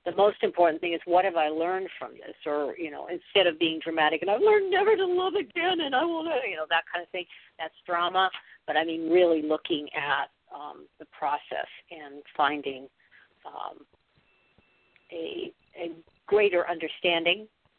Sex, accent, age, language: female, American, 50-69, English